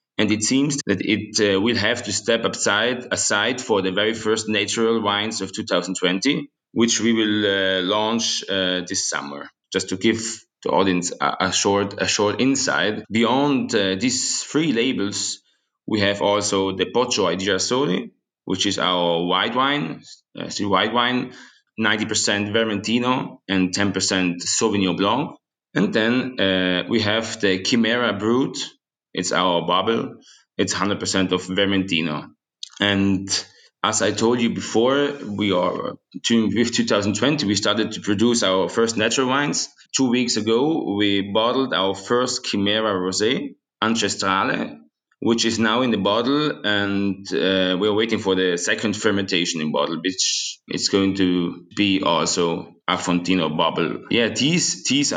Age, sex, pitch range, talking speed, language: 20-39, male, 95-115 Hz, 150 wpm, English